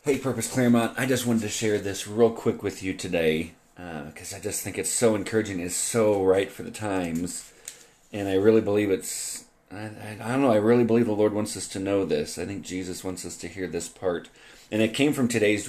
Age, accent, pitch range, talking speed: 40-59, American, 95-115 Hz, 235 wpm